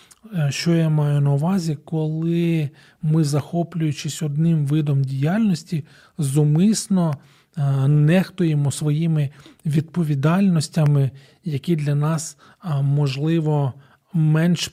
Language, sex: Ukrainian, male